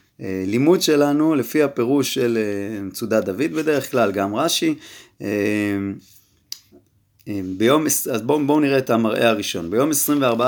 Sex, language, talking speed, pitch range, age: male, Hebrew, 115 wpm, 100-135 Hz, 30-49